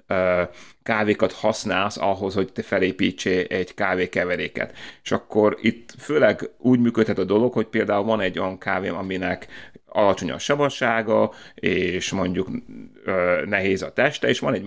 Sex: male